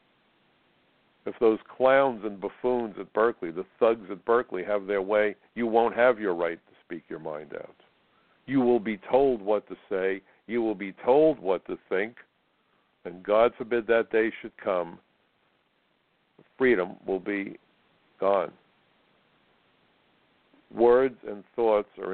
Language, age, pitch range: English, 60-79, 95-115 Hz